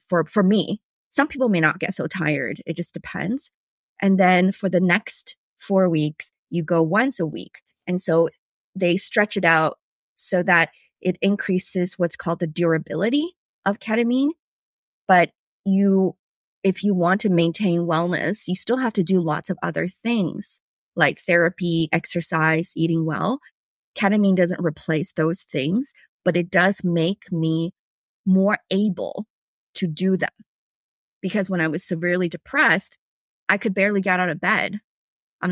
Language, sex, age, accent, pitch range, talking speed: English, female, 20-39, American, 170-195 Hz, 155 wpm